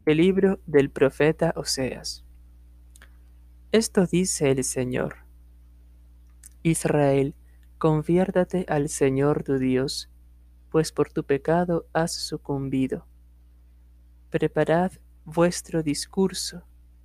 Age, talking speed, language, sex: 20-39, 85 wpm, Spanish, male